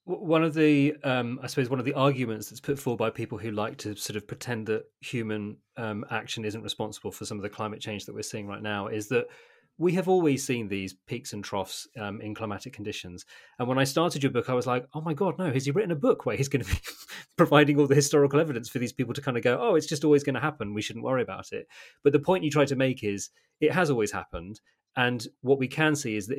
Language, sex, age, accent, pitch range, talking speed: English, male, 30-49, British, 105-140 Hz, 270 wpm